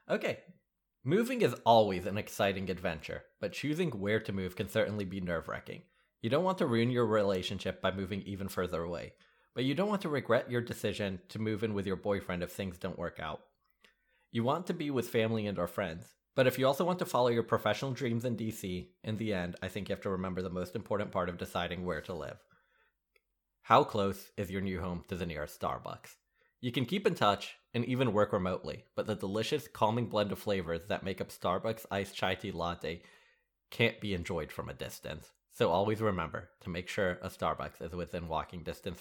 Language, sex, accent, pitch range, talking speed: English, male, American, 90-115 Hz, 210 wpm